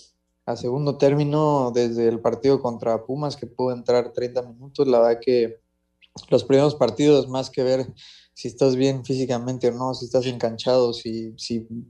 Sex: male